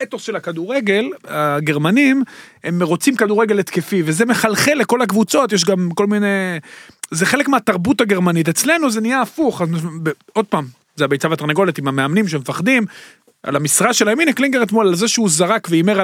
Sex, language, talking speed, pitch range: male, Hebrew, 170 wpm, 170-220 Hz